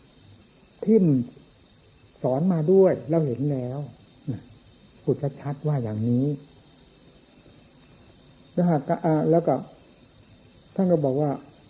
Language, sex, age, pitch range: Thai, male, 60-79, 130-180 Hz